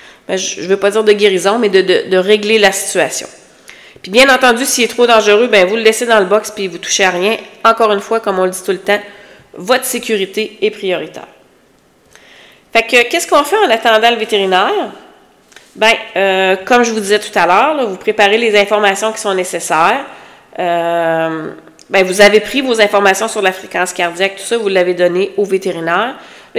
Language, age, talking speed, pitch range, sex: French, 40-59, 210 wpm, 185-225 Hz, female